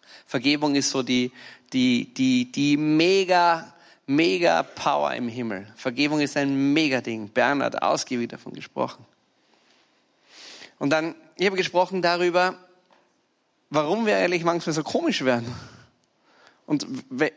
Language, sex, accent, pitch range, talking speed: German, male, German, 130-180 Hz, 120 wpm